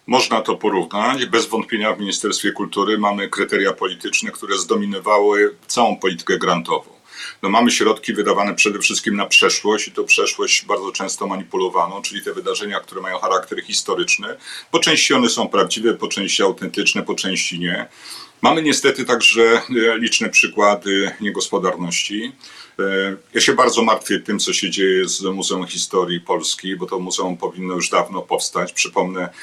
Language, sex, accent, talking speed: Polish, male, native, 150 wpm